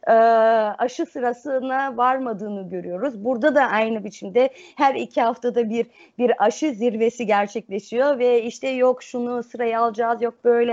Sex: female